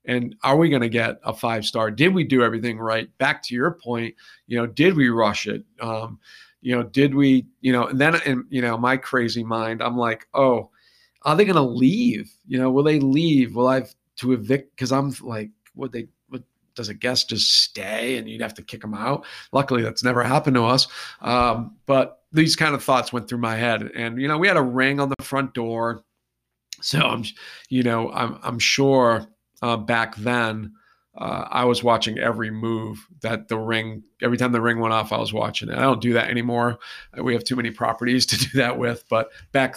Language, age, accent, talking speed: English, 40-59, American, 220 wpm